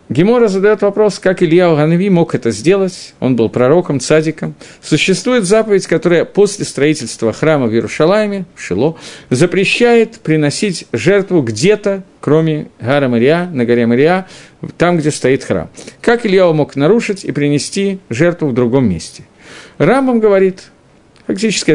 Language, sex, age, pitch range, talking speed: Russian, male, 50-69, 145-195 Hz, 140 wpm